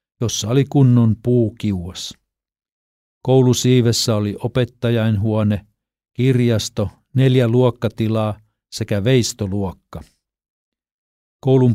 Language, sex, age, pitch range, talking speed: Finnish, male, 50-69, 105-120 Hz, 65 wpm